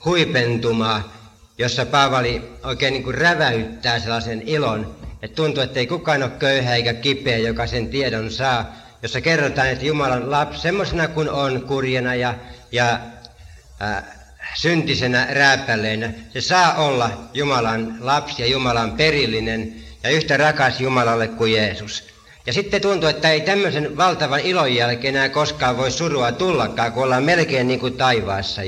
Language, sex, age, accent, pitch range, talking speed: Finnish, male, 60-79, native, 110-145 Hz, 145 wpm